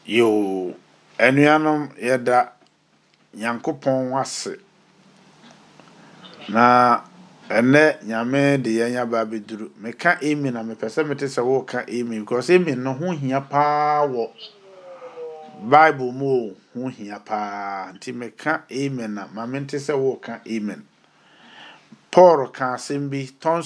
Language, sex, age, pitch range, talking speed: English, male, 50-69, 130-195 Hz, 115 wpm